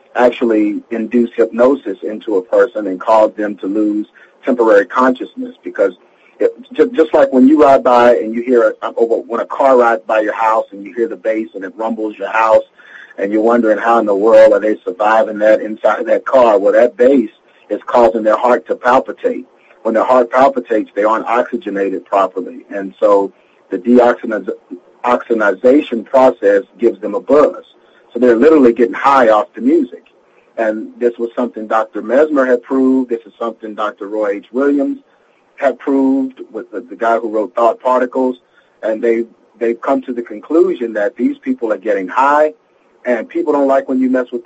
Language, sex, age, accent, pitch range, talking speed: English, male, 40-59, American, 110-140 Hz, 180 wpm